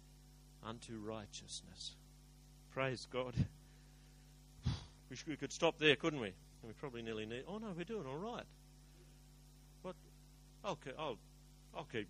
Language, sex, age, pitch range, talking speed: English, male, 50-69, 115-145 Hz, 140 wpm